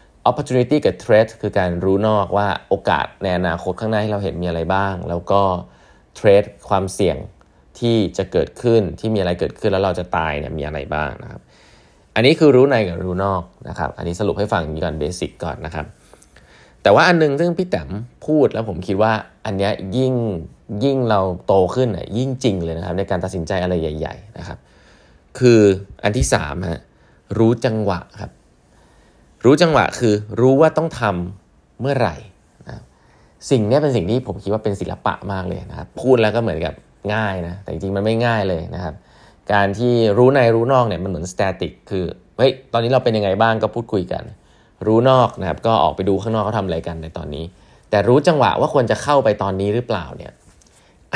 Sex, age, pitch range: male, 20-39, 90-115 Hz